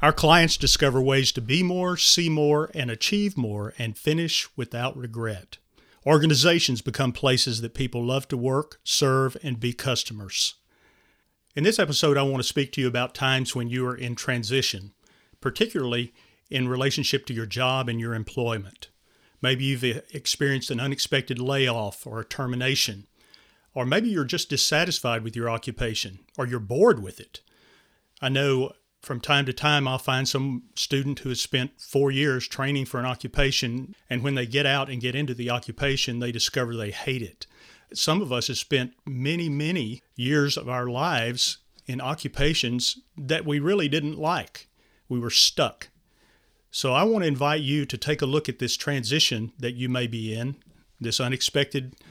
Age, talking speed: 40-59, 175 wpm